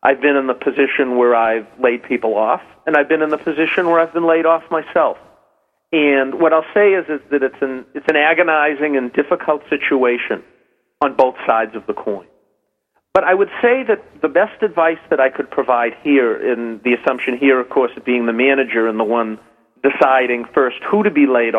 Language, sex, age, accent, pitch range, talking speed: English, male, 40-59, American, 130-165 Hz, 205 wpm